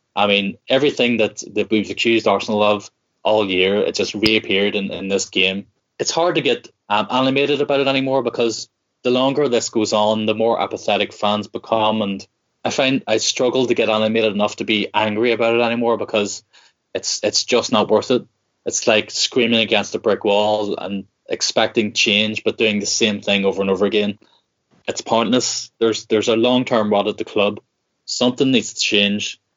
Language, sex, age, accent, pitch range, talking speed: English, male, 20-39, Irish, 105-120 Hz, 190 wpm